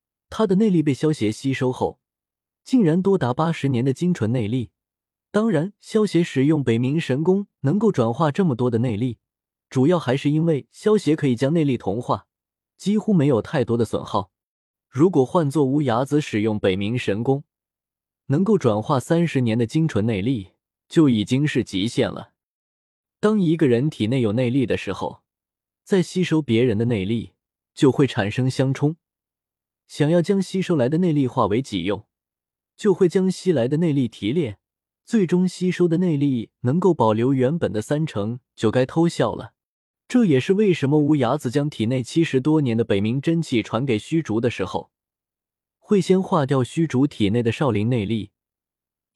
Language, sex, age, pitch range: Chinese, male, 20-39, 115-165 Hz